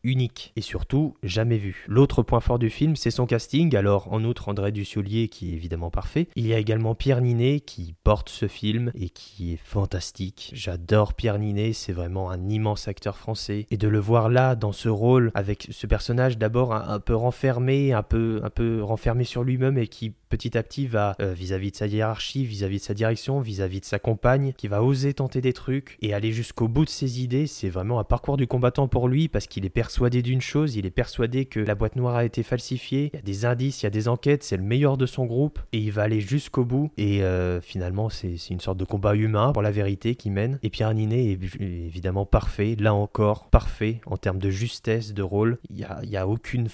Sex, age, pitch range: male, 20-39, 100-125 Hz